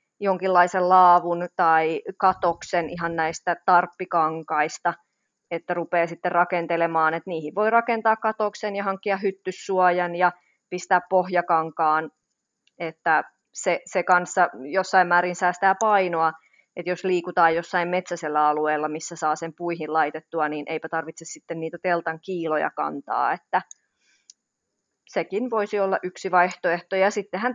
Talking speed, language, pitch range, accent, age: 125 wpm, Finnish, 165-190 Hz, native, 30-49